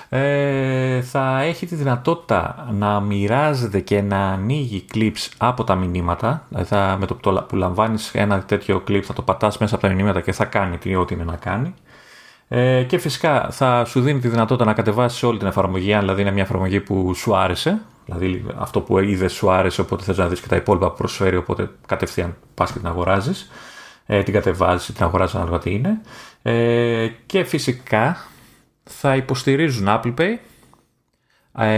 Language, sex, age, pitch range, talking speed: Greek, male, 30-49, 95-130 Hz, 185 wpm